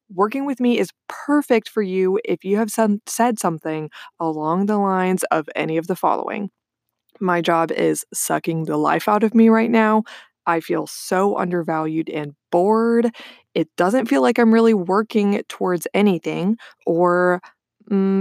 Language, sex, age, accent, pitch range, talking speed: English, female, 20-39, American, 170-225 Hz, 160 wpm